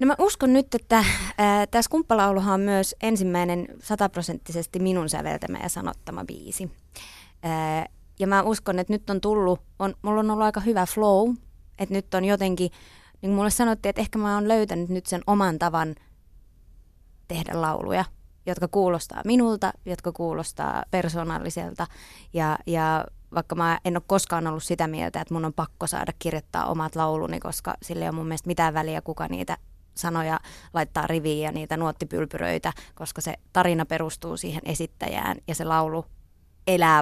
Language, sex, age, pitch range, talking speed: Finnish, female, 20-39, 160-195 Hz, 165 wpm